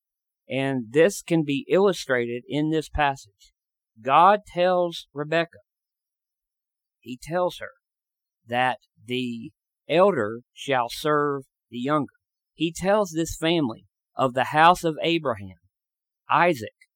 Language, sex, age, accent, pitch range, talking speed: English, male, 50-69, American, 120-160 Hz, 110 wpm